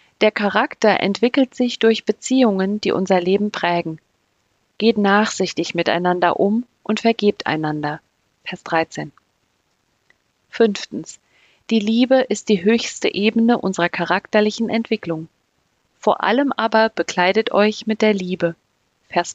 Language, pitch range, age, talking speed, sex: German, 180-225 Hz, 40-59, 120 wpm, female